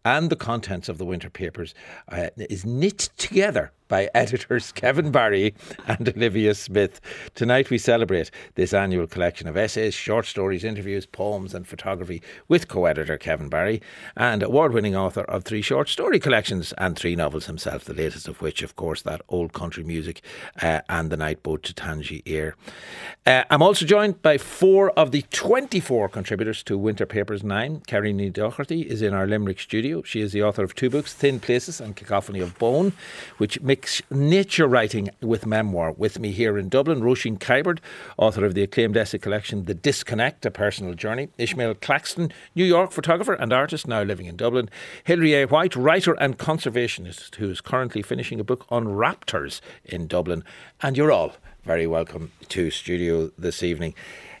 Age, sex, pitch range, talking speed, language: 60-79, male, 95-130 Hz, 175 wpm, English